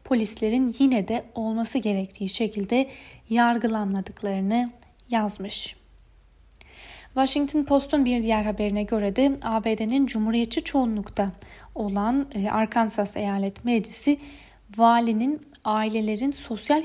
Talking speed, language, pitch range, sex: 90 wpm, Turkish, 205-245 Hz, female